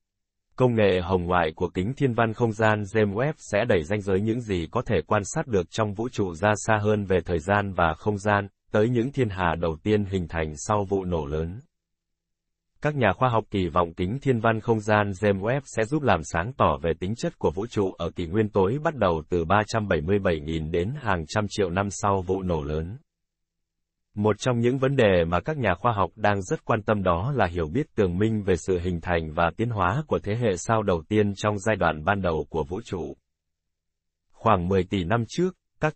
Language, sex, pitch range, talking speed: Vietnamese, male, 85-115 Hz, 225 wpm